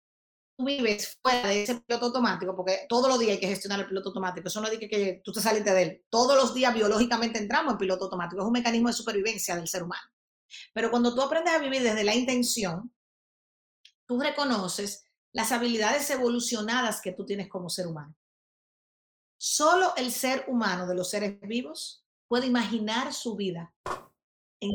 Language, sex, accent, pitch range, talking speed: Spanish, female, American, 195-255 Hz, 185 wpm